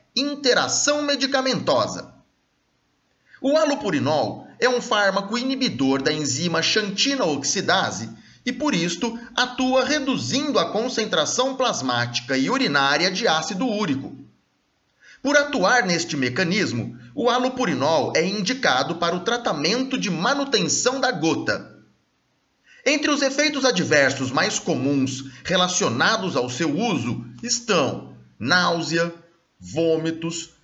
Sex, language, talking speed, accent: male, Portuguese, 105 wpm, Brazilian